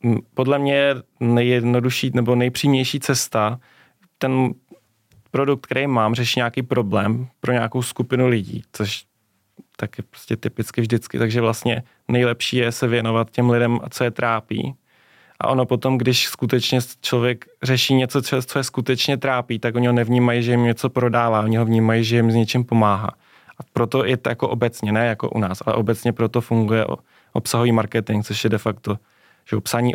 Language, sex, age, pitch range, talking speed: Czech, male, 20-39, 115-125 Hz, 165 wpm